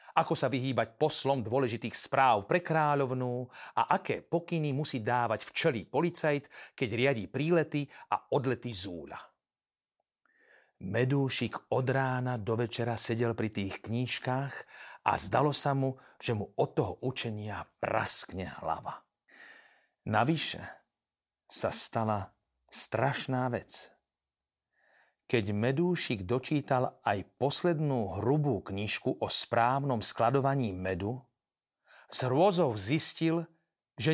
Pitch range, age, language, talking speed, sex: 120-165 Hz, 40-59, Slovak, 105 wpm, male